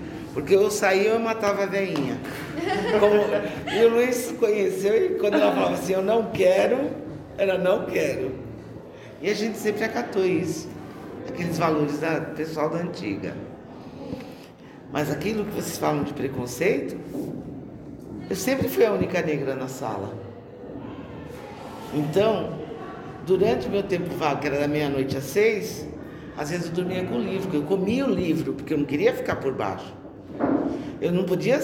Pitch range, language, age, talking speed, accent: 150-200 Hz, Portuguese, 50-69, 160 wpm, Brazilian